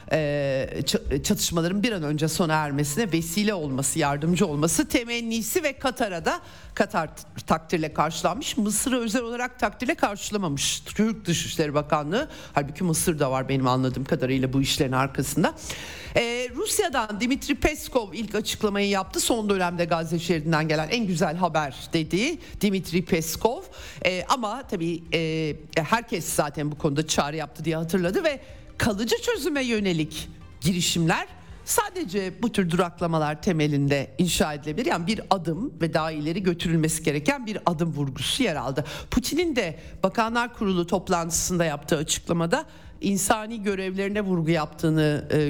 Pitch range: 155-215 Hz